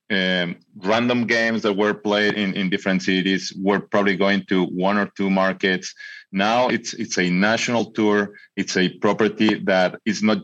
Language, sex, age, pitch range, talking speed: English, male, 30-49, 95-105 Hz, 170 wpm